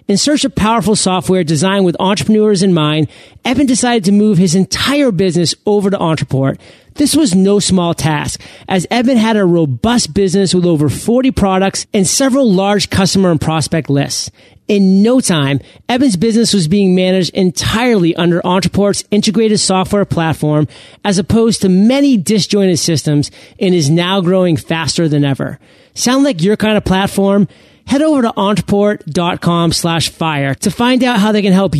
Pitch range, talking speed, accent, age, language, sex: 160-215 Hz, 165 wpm, American, 40-59, English, male